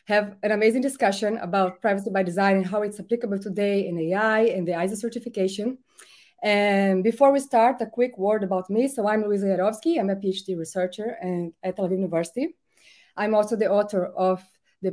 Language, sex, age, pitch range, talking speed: English, female, 20-39, 185-230 Hz, 190 wpm